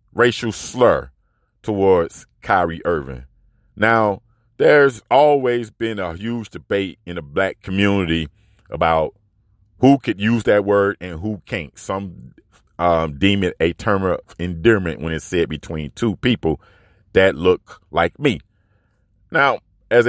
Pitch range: 85-110 Hz